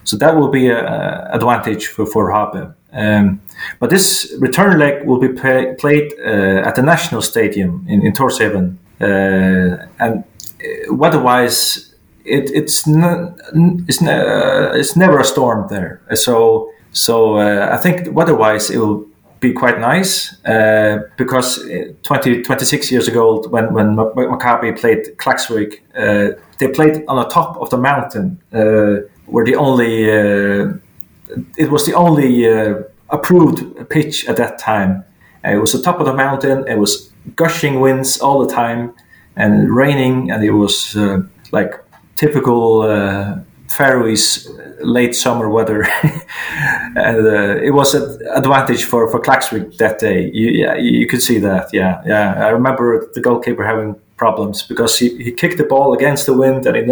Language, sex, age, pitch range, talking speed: Hebrew, male, 30-49, 105-150 Hz, 165 wpm